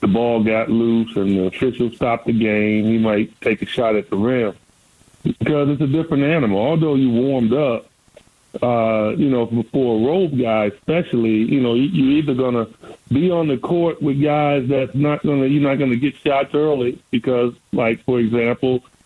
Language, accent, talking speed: English, American, 195 wpm